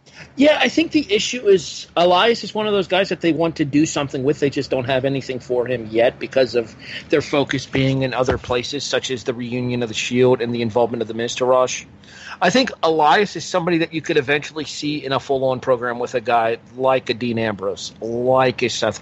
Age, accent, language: 40-59, American, English